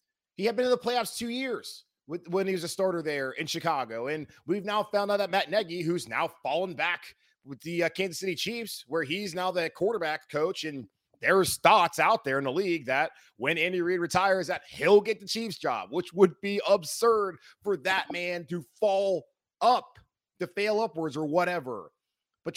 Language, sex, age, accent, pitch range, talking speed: English, male, 30-49, American, 155-205 Hz, 200 wpm